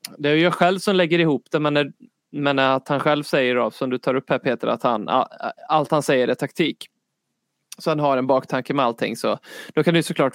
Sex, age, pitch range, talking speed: male, 20-39, 130-165 Hz, 240 wpm